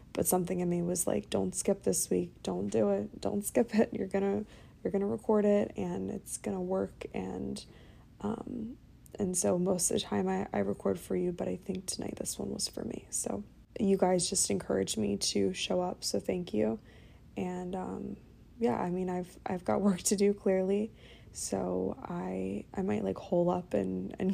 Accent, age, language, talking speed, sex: American, 20-39, English, 205 wpm, female